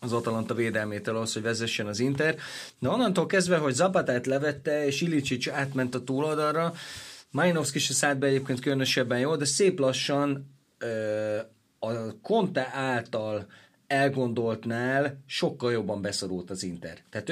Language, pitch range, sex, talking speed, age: Hungarian, 115-150 Hz, male, 140 wpm, 30-49